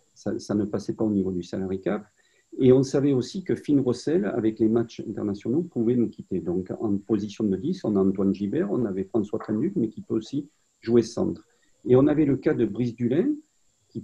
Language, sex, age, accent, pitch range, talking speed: French, male, 50-69, French, 105-130 Hz, 220 wpm